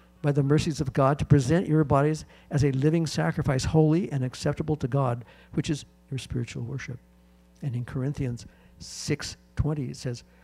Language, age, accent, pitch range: English, 60-79, American, 90-145 Hz